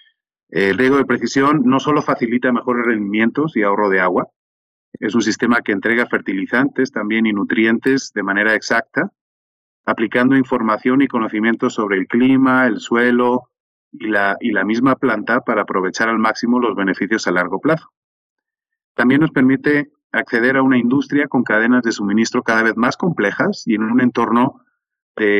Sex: male